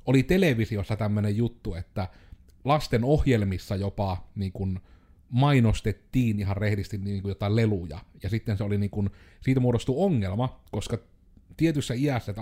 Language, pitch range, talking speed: Finnish, 95-120 Hz, 140 wpm